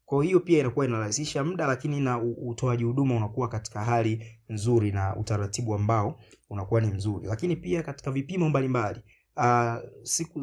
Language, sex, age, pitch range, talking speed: Swahili, male, 30-49, 110-130 Hz, 155 wpm